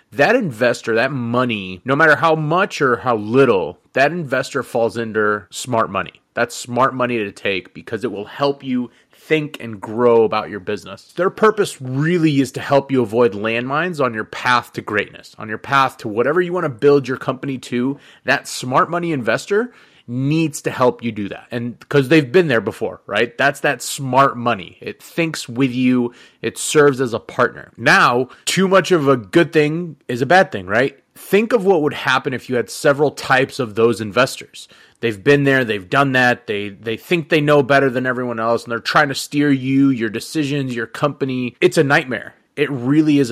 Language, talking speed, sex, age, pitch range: English, 200 wpm, male, 30-49, 120-150 Hz